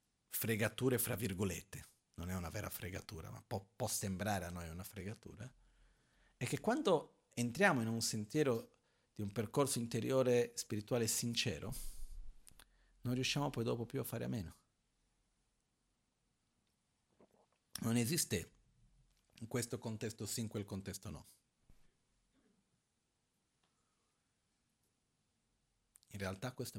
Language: Italian